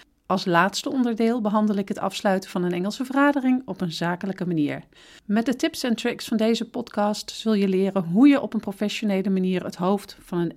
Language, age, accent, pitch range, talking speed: Dutch, 40-59, Dutch, 185-230 Hz, 205 wpm